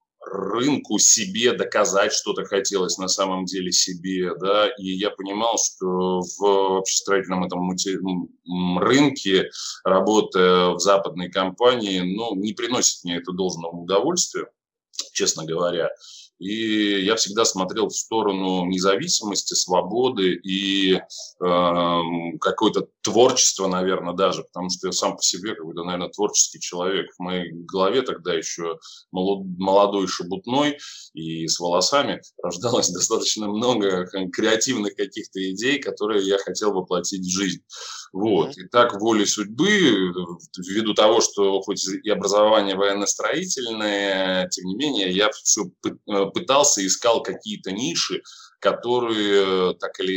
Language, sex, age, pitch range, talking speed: Russian, male, 20-39, 90-100 Hz, 120 wpm